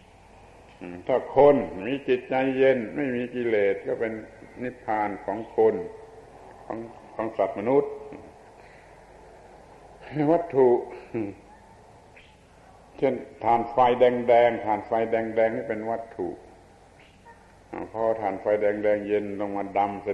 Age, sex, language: 70-89, male, Thai